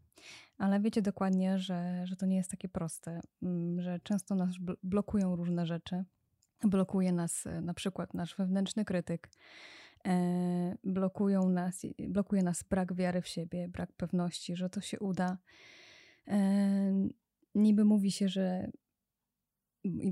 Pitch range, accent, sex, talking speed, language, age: 180-200 Hz, native, female, 130 wpm, Polish, 20-39